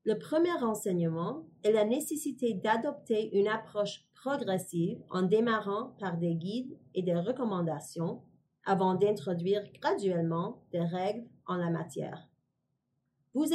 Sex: female